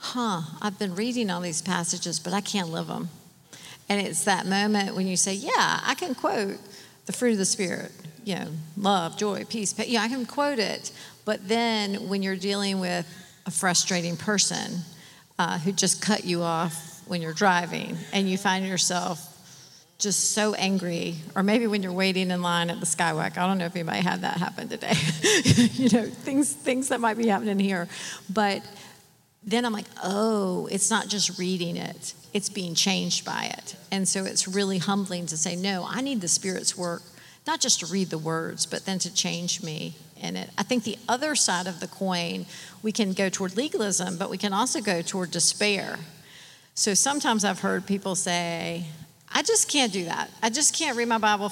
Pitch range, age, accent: 175-215 Hz, 50-69, American